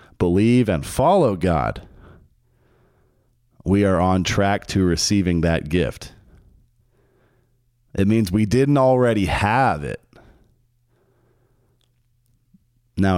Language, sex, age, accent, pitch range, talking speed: English, male, 40-59, American, 90-120 Hz, 90 wpm